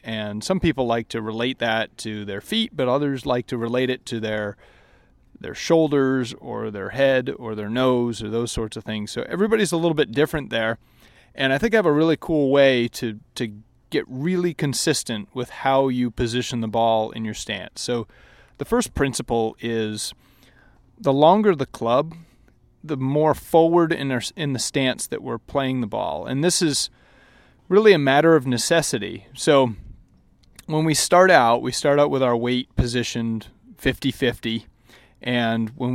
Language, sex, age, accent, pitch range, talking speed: English, male, 30-49, American, 115-145 Hz, 175 wpm